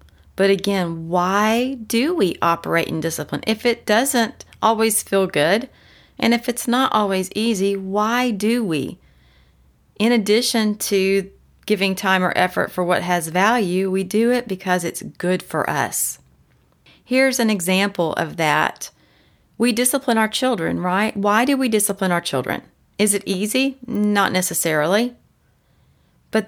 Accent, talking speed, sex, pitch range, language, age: American, 145 wpm, female, 180-220 Hz, English, 30-49